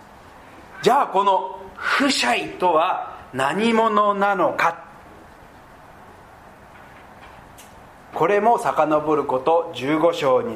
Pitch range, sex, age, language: 165-220 Hz, male, 40-59, Japanese